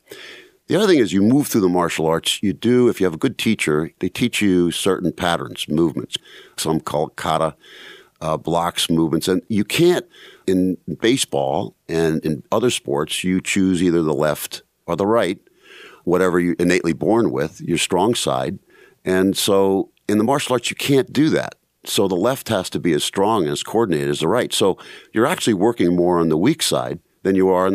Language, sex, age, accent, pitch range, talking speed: English, male, 50-69, American, 80-95 Hz, 200 wpm